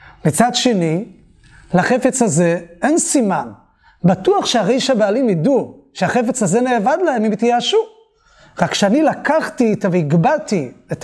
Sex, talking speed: male, 120 wpm